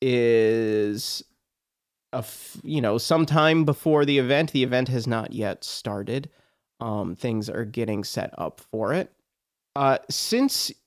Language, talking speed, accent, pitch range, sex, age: English, 140 wpm, American, 110-140 Hz, male, 30-49